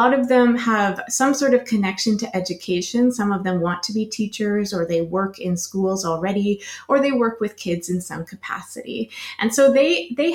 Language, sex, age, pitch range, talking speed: English, female, 20-39, 185-235 Hz, 210 wpm